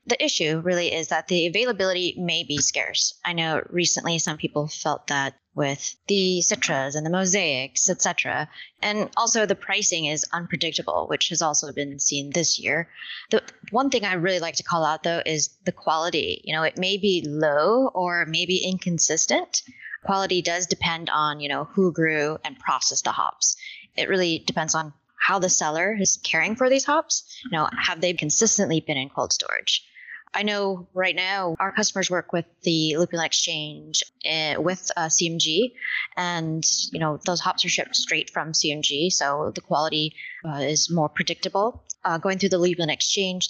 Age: 20-39